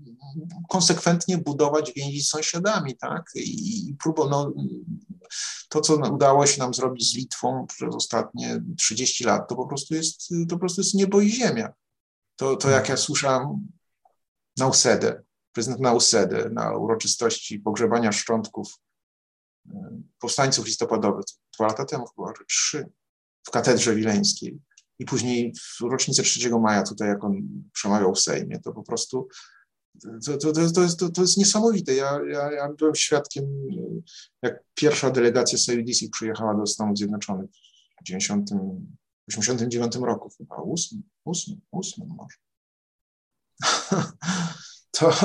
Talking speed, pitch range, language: 135 wpm, 120-170 Hz, Polish